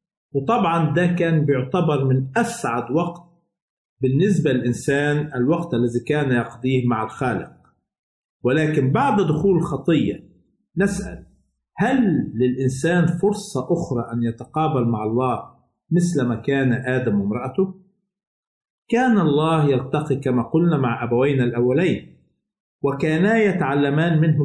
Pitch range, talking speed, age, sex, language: 130-175 Hz, 105 wpm, 50-69, male, Arabic